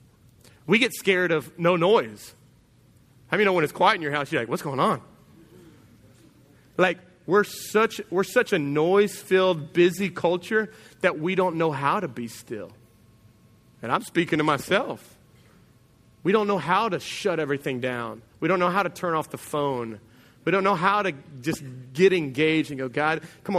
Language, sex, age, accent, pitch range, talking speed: English, male, 30-49, American, 135-180 Hz, 185 wpm